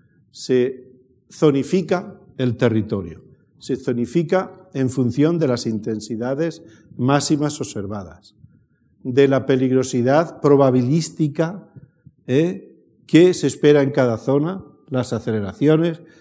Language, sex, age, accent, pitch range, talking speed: Spanish, male, 50-69, Spanish, 120-160 Hz, 95 wpm